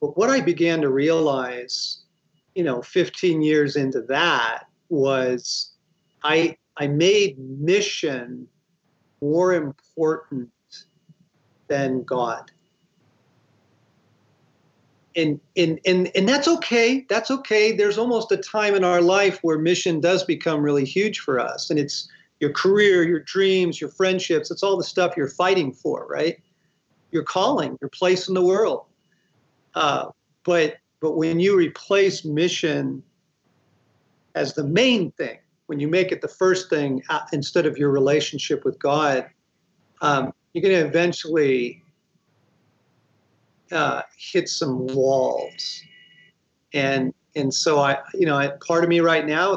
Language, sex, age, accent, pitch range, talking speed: English, male, 50-69, American, 145-185 Hz, 140 wpm